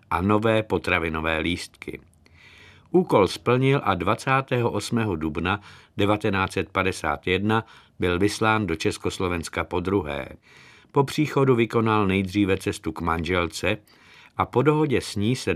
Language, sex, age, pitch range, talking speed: Czech, male, 50-69, 90-115 Hz, 110 wpm